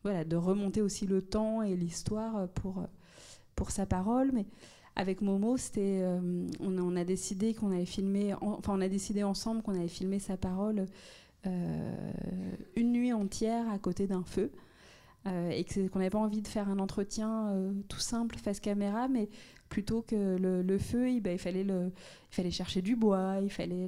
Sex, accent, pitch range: female, French, 185-220 Hz